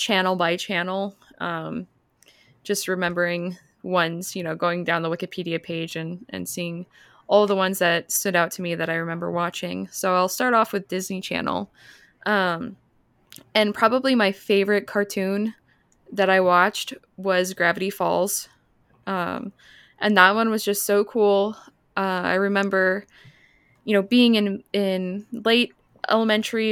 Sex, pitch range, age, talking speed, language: female, 175-205 Hz, 20-39, 150 wpm, English